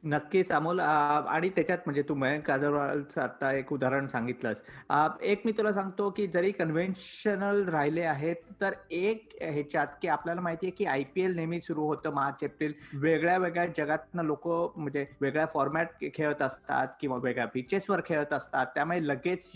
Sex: male